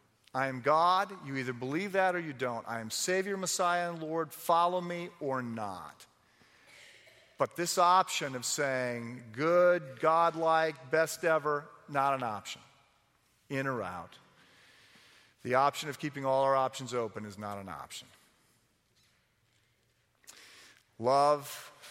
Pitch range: 115-145 Hz